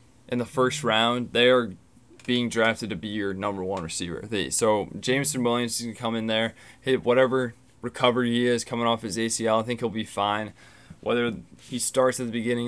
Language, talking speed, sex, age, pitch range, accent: English, 200 wpm, male, 20-39, 115-130 Hz, American